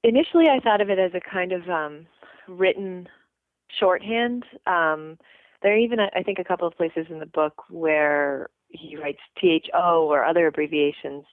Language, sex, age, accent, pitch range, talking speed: English, female, 30-49, American, 150-185 Hz, 170 wpm